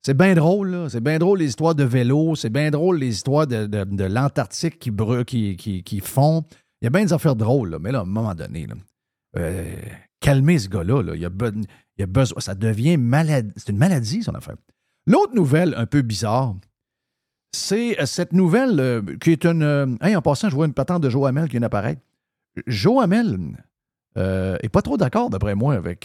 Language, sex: French, male